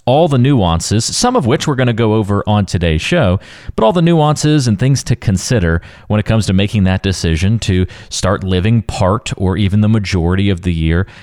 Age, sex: 30-49, male